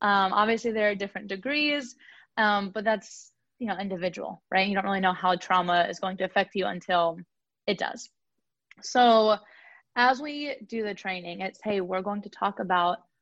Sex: female